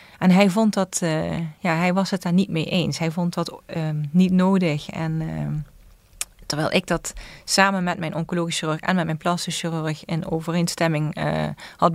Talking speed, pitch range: 190 wpm, 160-195 Hz